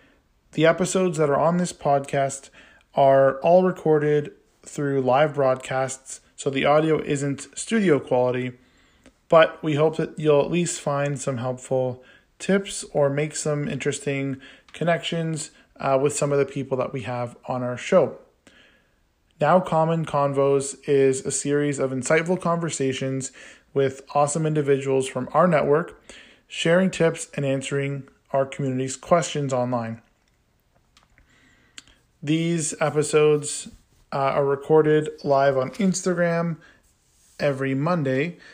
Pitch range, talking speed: 130-155 Hz, 125 wpm